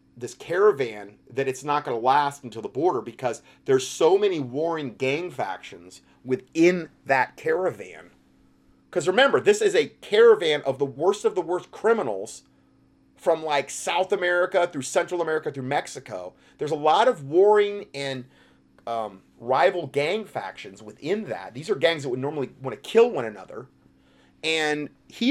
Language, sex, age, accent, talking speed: English, male, 30-49, American, 160 wpm